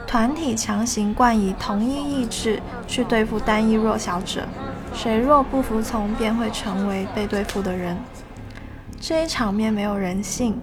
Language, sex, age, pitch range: Chinese, female, 20-39, 205-235 Hz